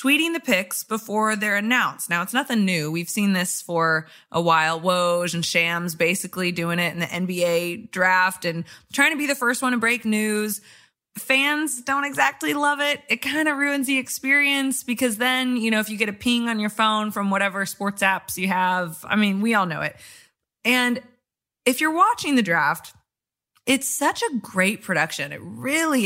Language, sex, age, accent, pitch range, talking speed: English, female, 20-39, American, 190-270 Hz, 195 wpm